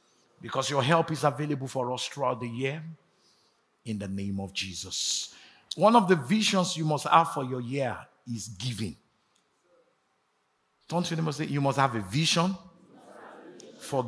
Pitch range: 125-180 Hz